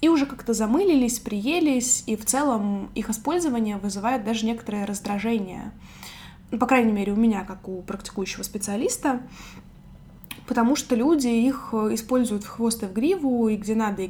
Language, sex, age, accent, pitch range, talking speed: Russian, female, 20-39, native, 205-265 Hz, 160 wpm